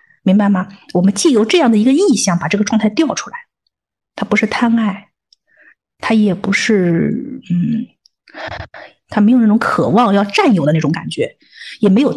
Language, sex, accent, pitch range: Chinese, female, native, 185-240 Hz